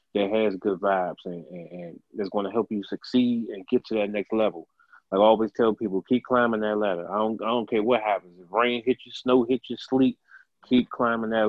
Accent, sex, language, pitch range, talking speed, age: American, male, English, 105-120 Hz, 235 wpm, 30-49